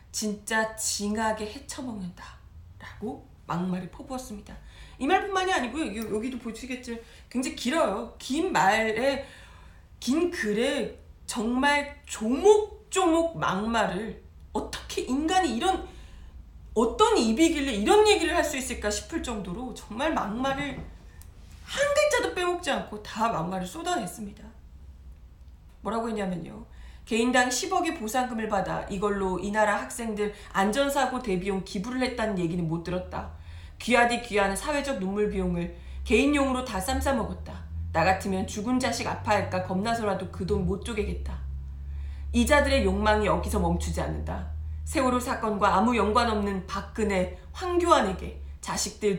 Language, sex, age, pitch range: Korean, female, 40-59, 185-275 Hz